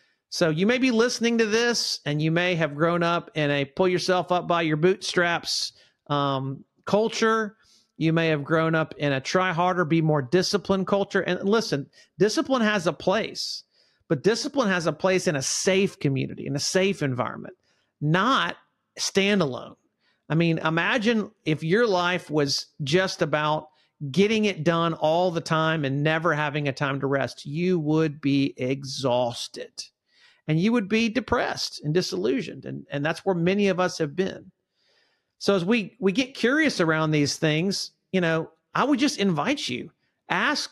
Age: 50-69